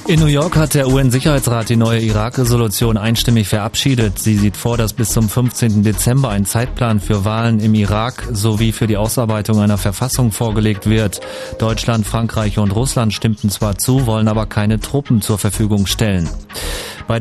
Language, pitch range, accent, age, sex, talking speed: German, 105-120 Hz, German, 30-49, male, 165 wpm